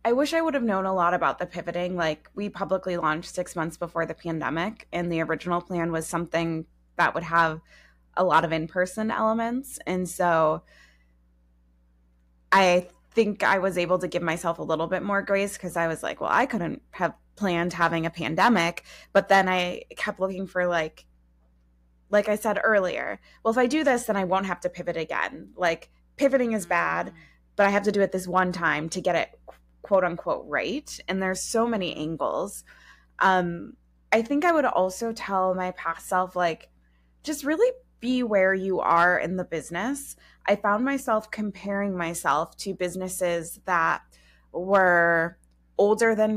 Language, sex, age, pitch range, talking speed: English, female, 20-39, 165-200 Hz, 180 wpm